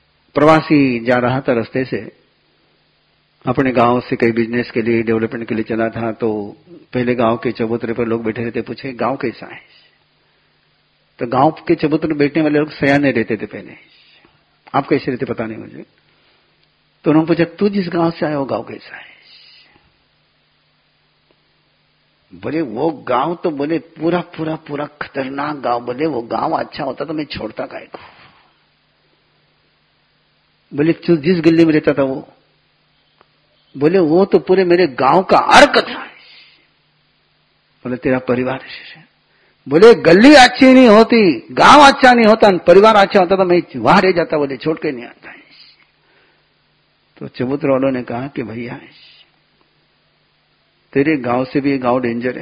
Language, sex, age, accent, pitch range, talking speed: Hindi, male, 50-69, native, 120-165 Hz, 160 wpm